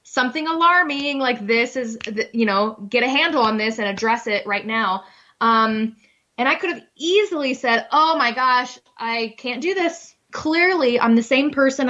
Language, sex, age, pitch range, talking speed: English, female, 20-39, 215-260 Hz, 180 wpm